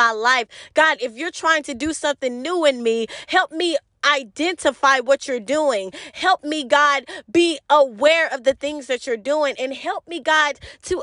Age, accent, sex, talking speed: 20-39, American, female, 185 wpm